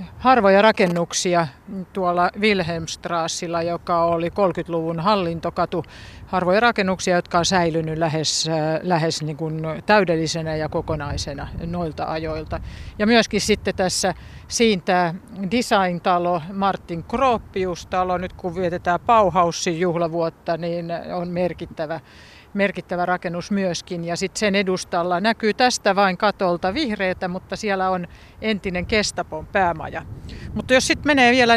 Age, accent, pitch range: 50-69, native, 170-210 Hz